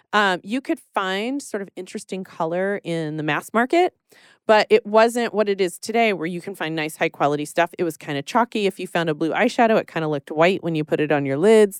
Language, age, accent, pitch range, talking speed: English, 30-49, American, 165-210 Hz, 255 wpm